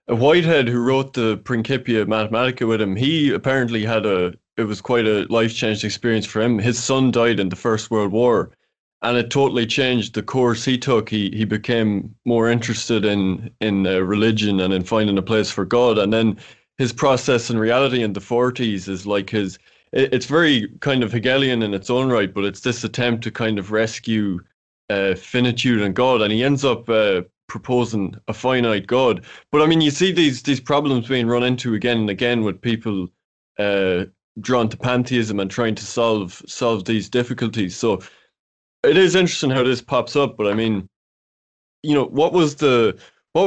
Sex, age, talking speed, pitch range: male, 20-39, 195 wpm, 105-125 Hz